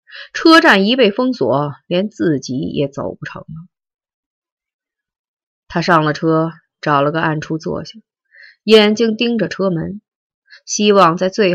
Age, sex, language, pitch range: 30-49, female, Chinese, 160-225 Hz